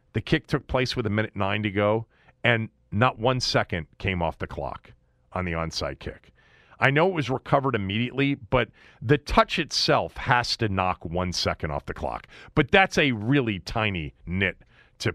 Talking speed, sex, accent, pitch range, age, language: 185 wpm, male, American, 105-155 Hz, 40-59, English